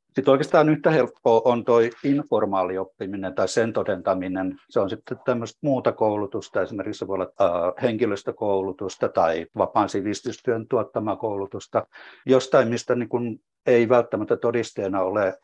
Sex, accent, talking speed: male, native, 130 wpm